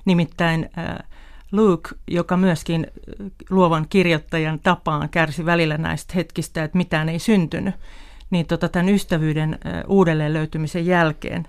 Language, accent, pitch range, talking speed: Finnish, native, 150-175 Hz, 110 wpm